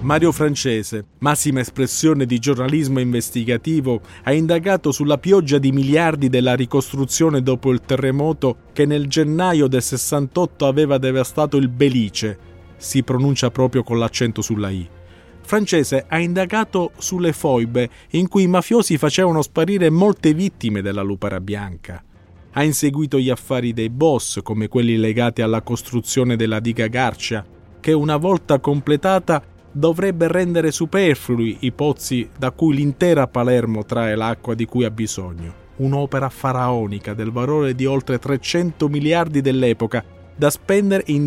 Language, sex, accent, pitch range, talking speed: Italian, male, native, 115-155 Hz, 140 wpm